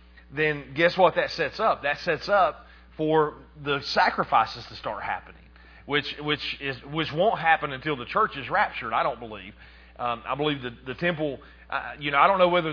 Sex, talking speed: male, 200 wpm